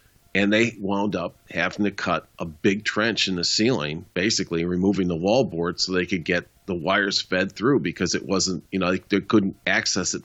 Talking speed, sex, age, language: 205 wpm, male, 40-59, English